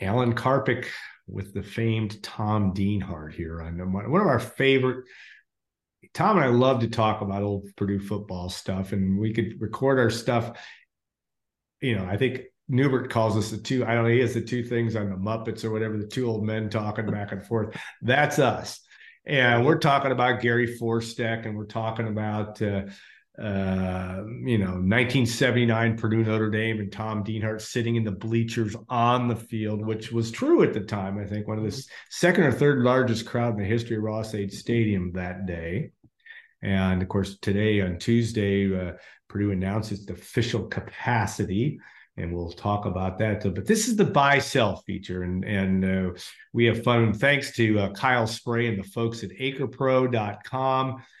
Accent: American